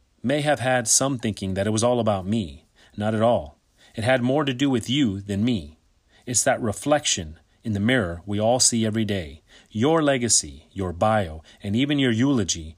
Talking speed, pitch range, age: 195 wpm, 100-130 Hz, 30-49